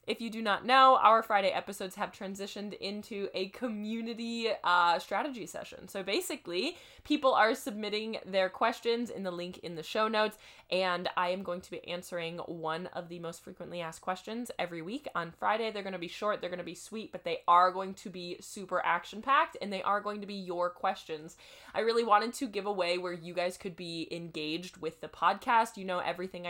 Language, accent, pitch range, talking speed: English, American, 170-210 Hz, 210 wpm